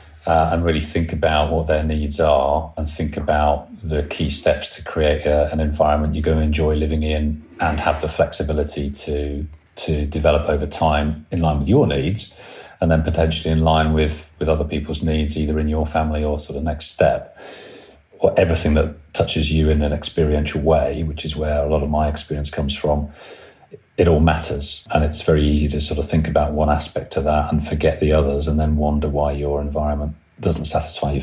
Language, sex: English, male